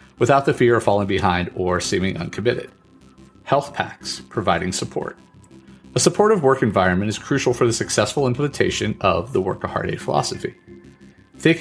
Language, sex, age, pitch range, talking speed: English, male, 40-59, 90-130 Hz, 155 wpm